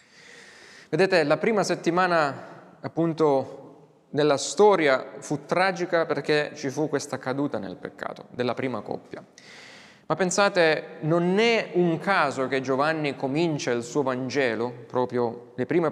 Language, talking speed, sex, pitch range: Italian, 130 wpm, male, 130-170 Hz